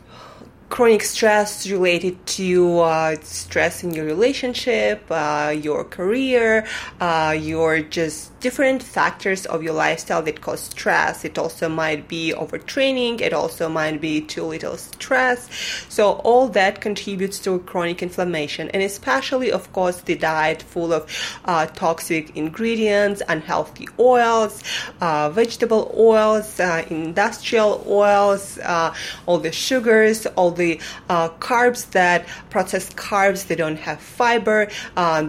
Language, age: English, 20-39